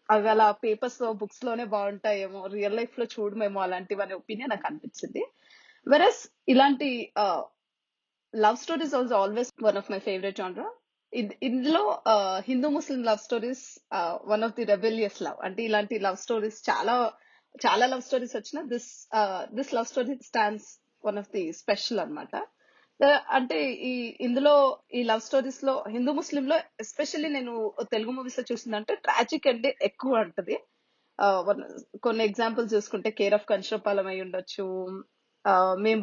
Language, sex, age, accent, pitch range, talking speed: Telugu, female, 30-49, native, 210-270 Hz, 140 wpm